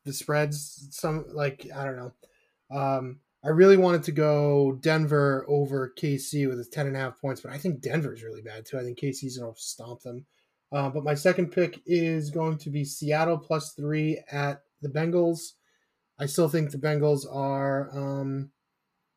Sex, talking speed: male, 180 wpm